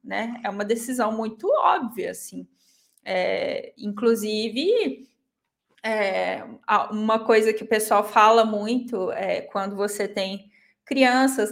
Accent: Brazilian